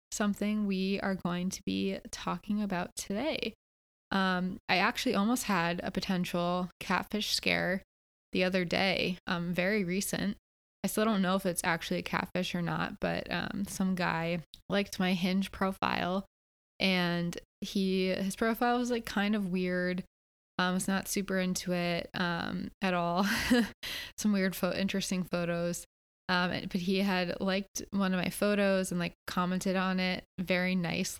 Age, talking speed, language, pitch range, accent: 20-39, 160 wpm, English, 180-200 Hz, American